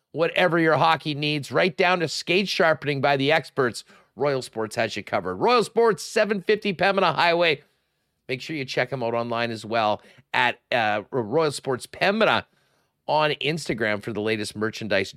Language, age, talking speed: English, 40-59, 165 wpm